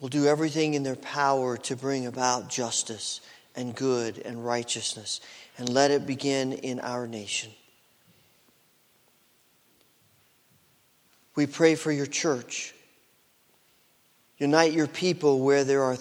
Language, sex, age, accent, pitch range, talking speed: English, male, 40-59, American, 130-155 Hz, 120 wpm